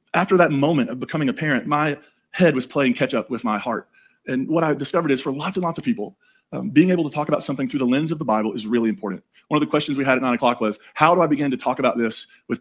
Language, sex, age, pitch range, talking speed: English, male, 30-49, 125-175 Hz, 295 wpm